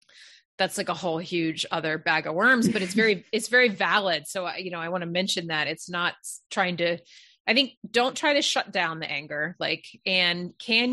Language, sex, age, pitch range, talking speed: English, female, 30-49, 175-225 Hz, 215 wpm